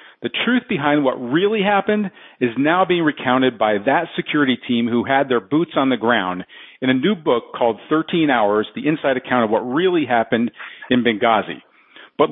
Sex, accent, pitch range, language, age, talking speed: male, American, 120-170 Hz, English, 50-69, 185 wpm